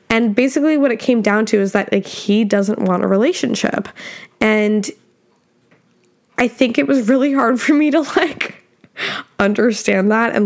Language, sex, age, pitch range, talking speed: English, female, 10-29, 210-265 Hz, 165 wpm